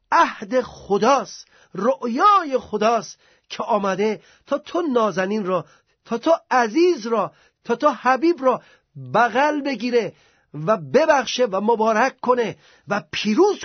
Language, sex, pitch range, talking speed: Persian, male, 200-260 Hz, 120 wpm